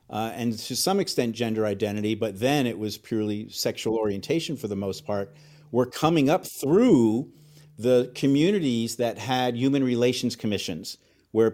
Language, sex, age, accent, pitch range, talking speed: English, male, 50-69, American, 110-125 Hz, 155 wpm